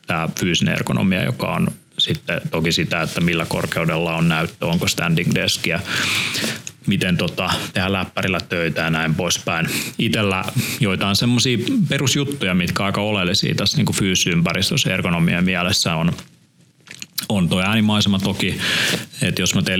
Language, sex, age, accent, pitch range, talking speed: Finnish, male, 30-49, native, 80-105 Hz, 135 wpm